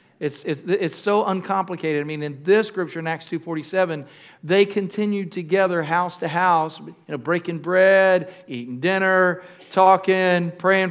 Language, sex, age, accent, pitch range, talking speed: English, male, 50-69, American, 170-210 Hz, 150 wpm